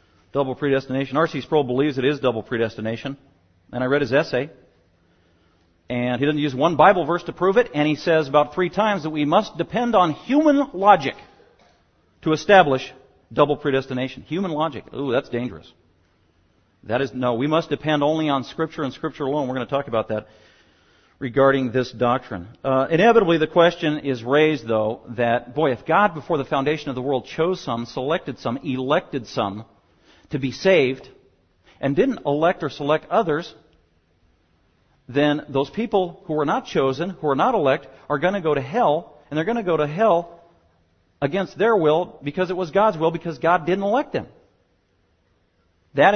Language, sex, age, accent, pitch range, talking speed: English, male, 50-69, American, 110-165 Hz, 180 wpm